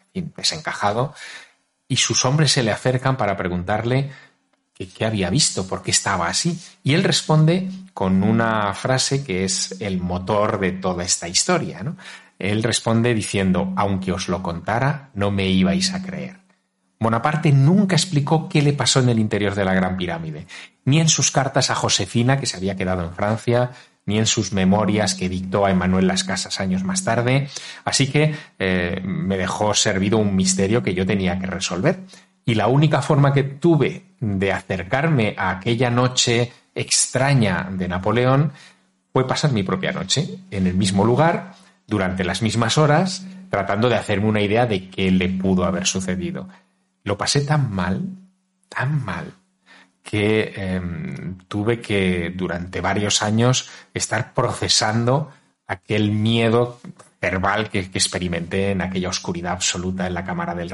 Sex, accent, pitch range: male, Spanish, 95-145 Hz